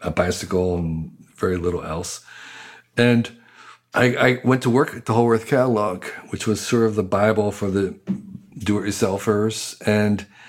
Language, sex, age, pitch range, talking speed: English, male, 50-69, 100-120 Hz, 150 wpm